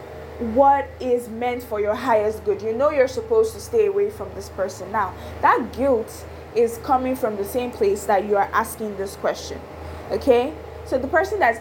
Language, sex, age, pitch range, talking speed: English, female, 20-39, 180-275 Hz, 190 wpm